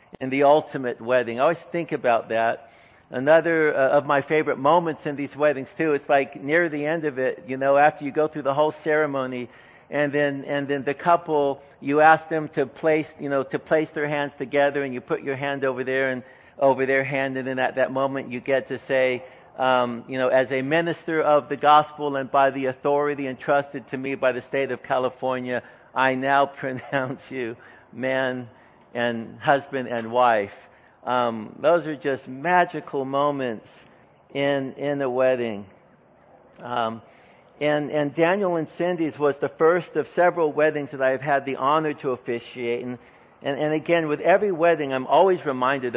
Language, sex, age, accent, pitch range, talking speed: English, male, 50-69, American, 130-150 Hz, 185 wpm